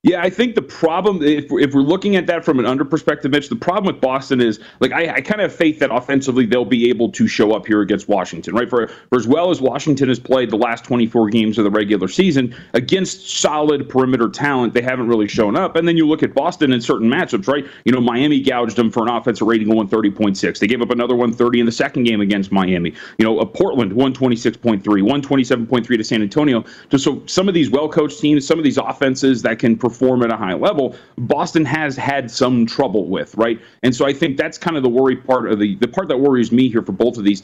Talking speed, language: 245 wpm, English